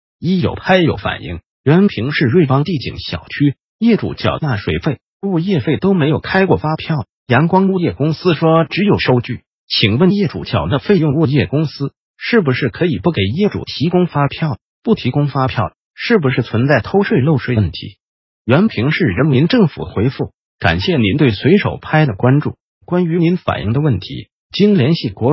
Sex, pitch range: male, 125-180 Hz